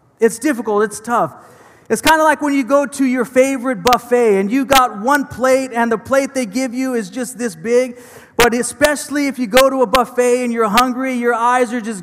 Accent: American